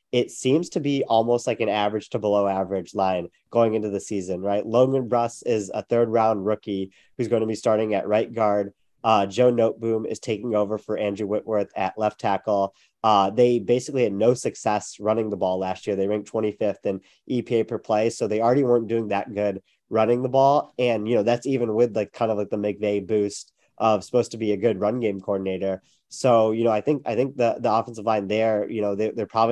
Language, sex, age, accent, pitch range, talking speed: English, male, 30-49, American, 105-120 Hz, 225 wpm